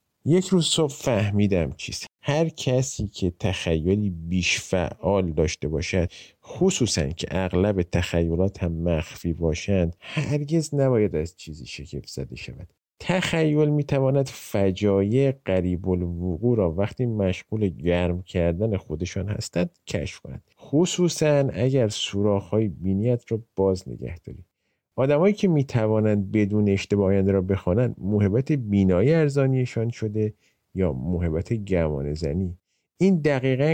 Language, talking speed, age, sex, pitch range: Persian, 115 wpm, 50-69, male, 90-130 Hz